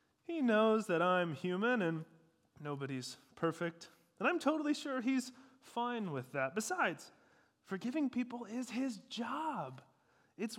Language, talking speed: English, 130 wpm